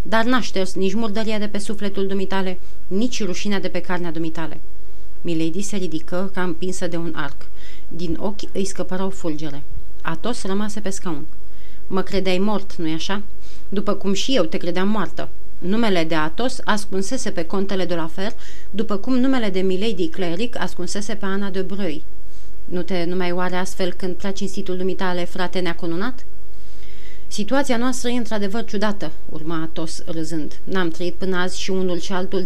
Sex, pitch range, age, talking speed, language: female, 175-205 Hz, 30-49, 170 wpm, Romanian